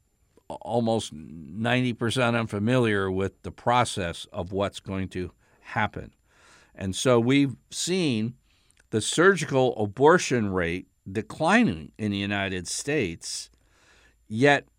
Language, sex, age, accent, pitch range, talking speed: English, male, 60-79, American, 100-140 Hz, 100 wpm